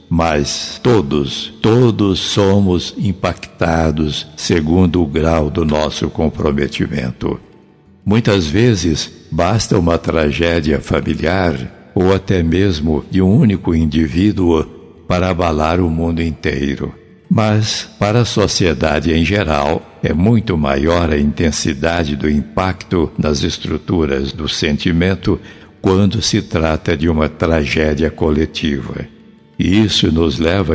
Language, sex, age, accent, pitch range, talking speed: Portuguese, male, 60-79, Brazilian, 75-95 Hz, 110 wpm